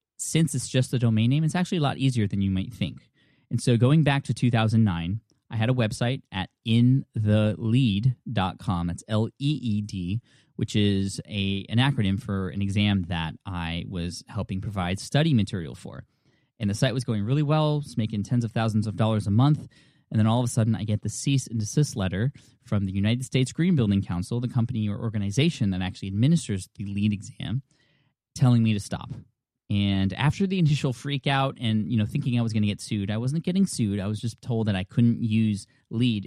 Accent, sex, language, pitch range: American, male, English, 105-130 Hz